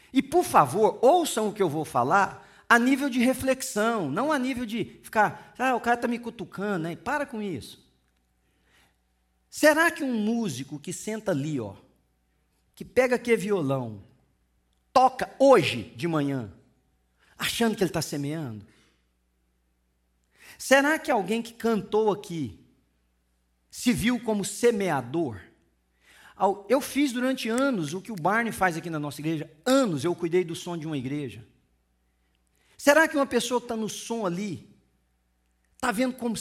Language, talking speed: English, 150 wpm